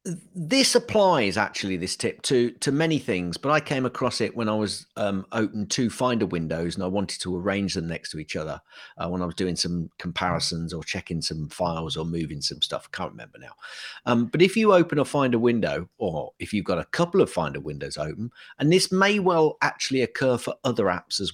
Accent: British